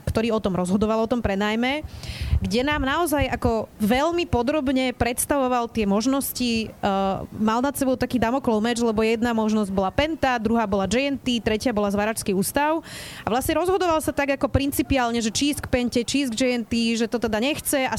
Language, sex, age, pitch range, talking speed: Slovak, female, 30-49, 215-280 Hz, 170 wpm